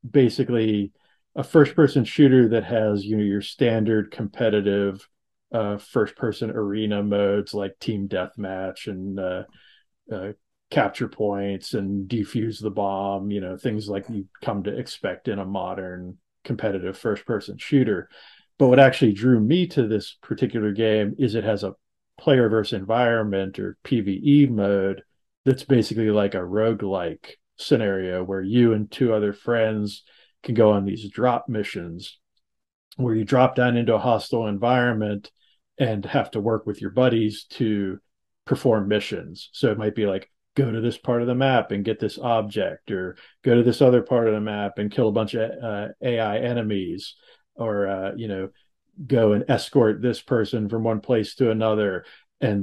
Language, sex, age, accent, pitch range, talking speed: English, male, 40-59, American, 100-120 Hz, 160 wpm